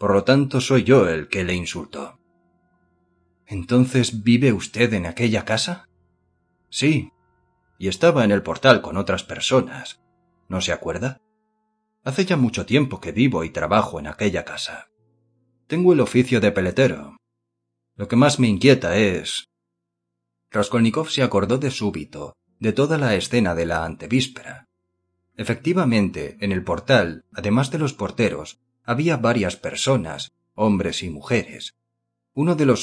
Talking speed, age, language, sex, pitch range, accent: 145 wpm, 30-49, Spanish, male, 90-130 Hz, Spanish